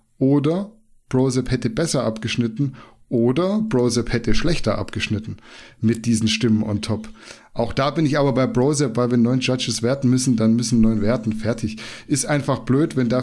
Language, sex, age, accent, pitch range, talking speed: German, male, 10-29, German, 115-135 Hz, 170 wpm